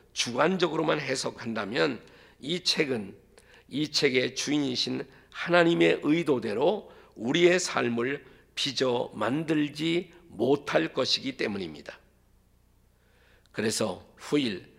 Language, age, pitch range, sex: Korean, 50-69, 115-150 Hz, male